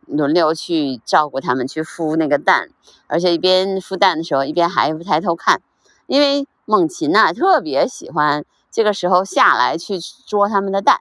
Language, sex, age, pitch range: Chinese, female, 30-49, 145-200 Hz